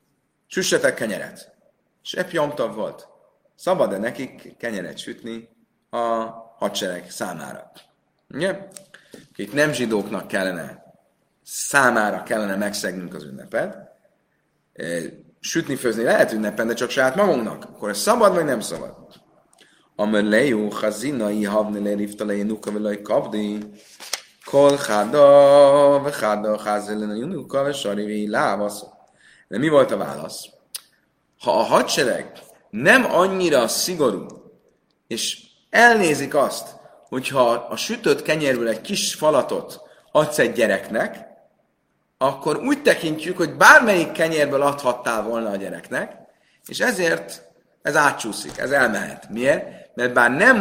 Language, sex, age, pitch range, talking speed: Hungarian, male, 30-49, 105-170 Hz, 100 wpm